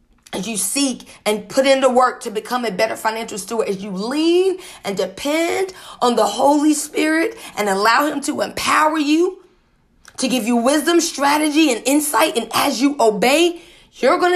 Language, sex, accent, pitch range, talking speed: English, female, American, 205-285 Hz, 175 wpm